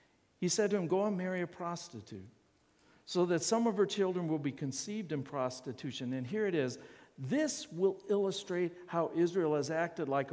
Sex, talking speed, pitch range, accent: male, 185 wpm, 170-245 Hz, American